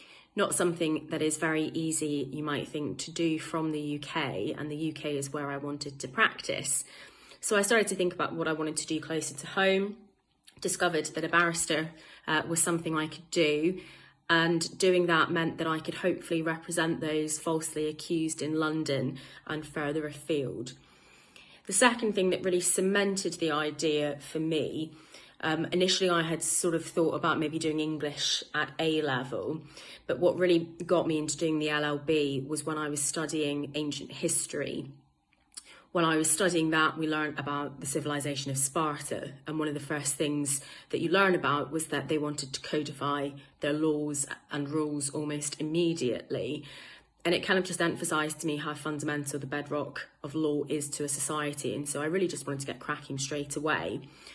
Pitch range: 150-165 Hz